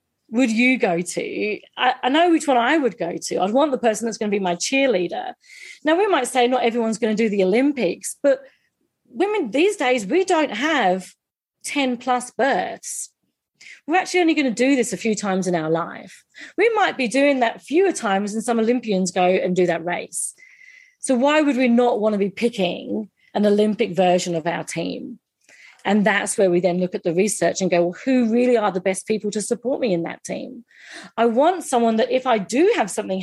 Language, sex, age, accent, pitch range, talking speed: English, female, 40-59, British, 185-255 Hz, 215 wpm